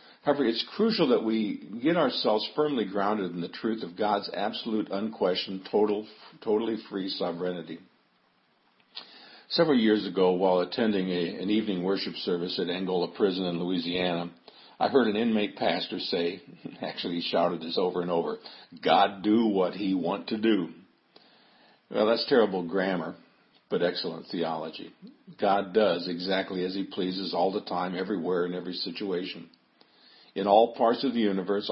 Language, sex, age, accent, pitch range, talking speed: English, male, 50-69, American, 90-110 Hz, 155 wpm